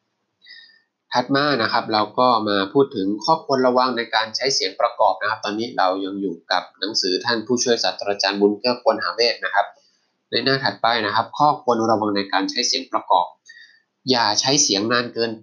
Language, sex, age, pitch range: Thai, male, 20-39, 105-135 Hz